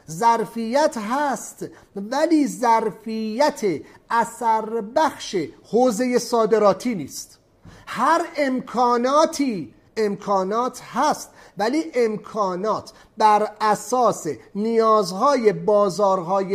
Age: 40-59